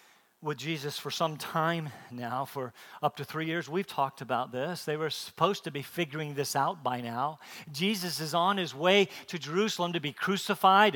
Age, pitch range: 40-59, 150-230 Hz